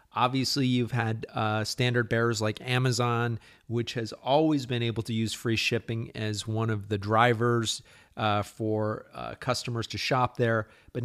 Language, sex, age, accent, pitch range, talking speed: English, male, 30-49, American, 115-135 Hz, 165 wpm